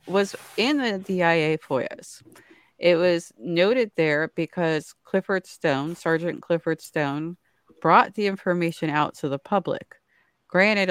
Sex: female